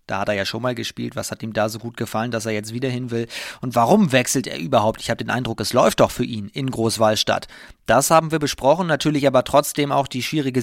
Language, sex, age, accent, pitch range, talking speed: German, male, 30-49, German, 120-145 Hz, 260 wpm